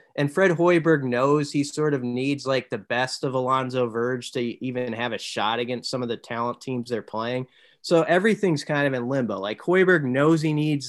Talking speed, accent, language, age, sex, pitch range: 210 wpm, American, English, 30-49, male, 120-145 Hz